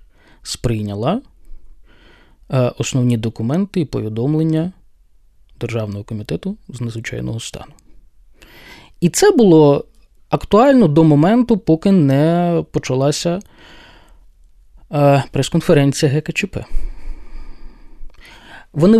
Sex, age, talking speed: male, 20-39, 70 wpm